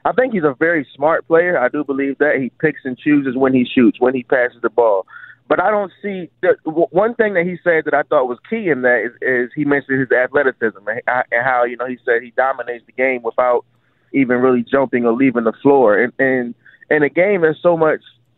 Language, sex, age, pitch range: English, male, 20-39, 130-190 Hz